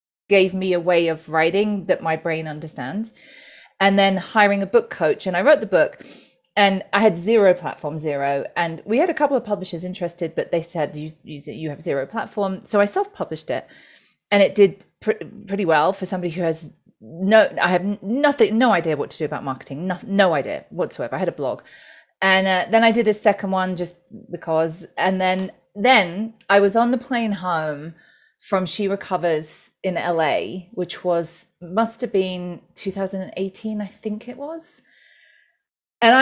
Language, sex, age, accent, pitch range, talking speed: English, female, 30-49, British, 170-215 Hz, 185 wpm